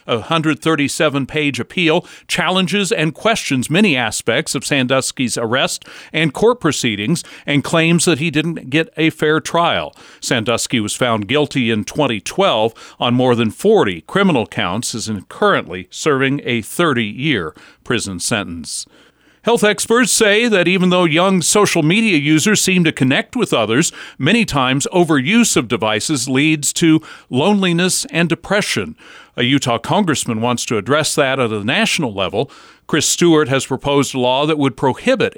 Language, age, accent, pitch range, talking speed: English, 40-59, American, 135-180 Hz, 150 wpm